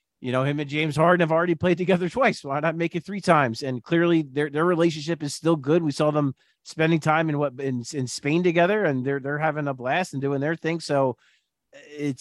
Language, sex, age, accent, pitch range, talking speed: English, male, 30-49, American, 135-170 Hz, 235 wpm